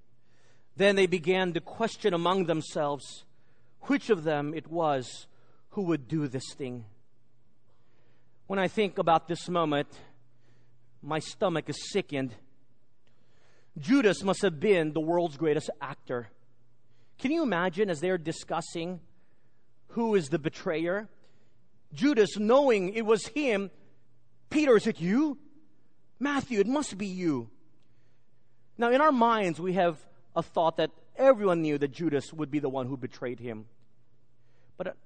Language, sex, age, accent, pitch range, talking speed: English, male, 40-59, American, 125-205 Hz, 135 wpm